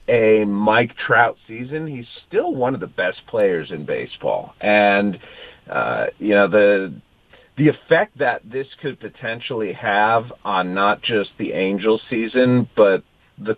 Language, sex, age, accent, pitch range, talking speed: English, male, 40-59, American, 100-140 Hz, 145 wpm